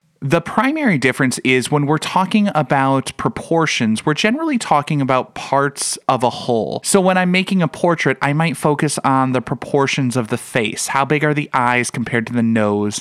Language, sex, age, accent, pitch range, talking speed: English, male, 30-49, American, 115-155 Hz, 190 wpm